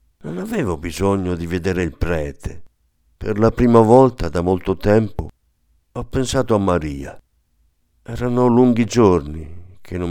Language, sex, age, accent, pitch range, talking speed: Italian, male, 50-69, native, 85-110 Hz, 135 wpm